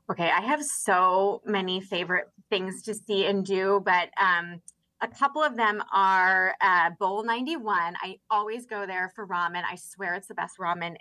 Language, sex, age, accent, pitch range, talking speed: English, female, 20-39, American, 180-215 Hz, 180 wpm